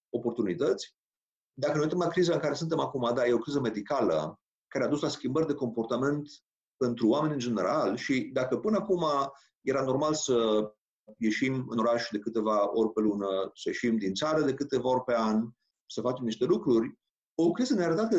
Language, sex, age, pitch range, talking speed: Romanian, male, 40-59, 120-185 Hz, 195 wpm